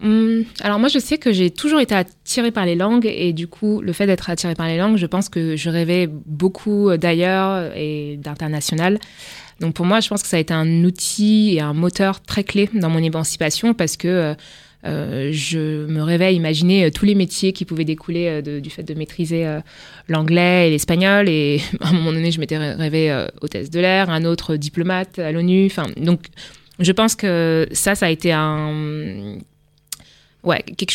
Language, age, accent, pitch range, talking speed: French, 20-39, French, 160-195 Hz, 195 wpm